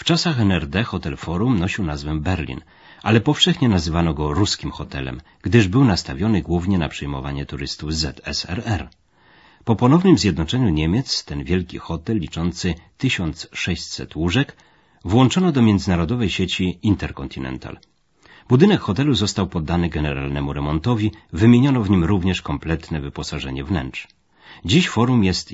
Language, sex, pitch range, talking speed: Polish, male, 80-110 Hz, 125 wpm